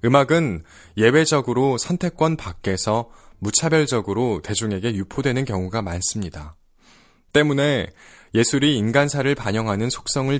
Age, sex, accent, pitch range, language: 20-39, male, native, 95-130 Hz, Korean